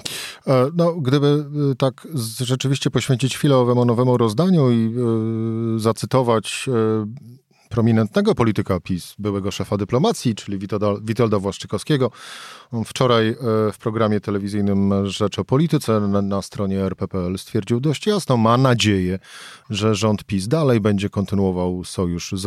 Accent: native